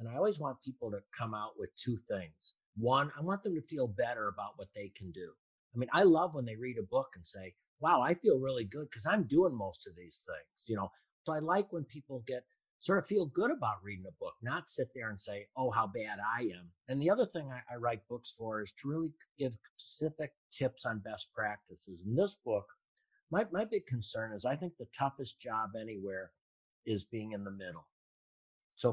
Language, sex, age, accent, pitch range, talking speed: English, male, 50-69, American, 105-140 Hz, 230 wpm